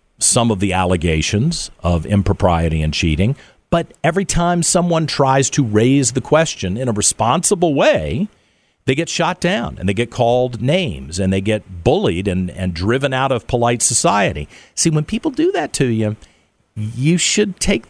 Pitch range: 95-145 Hz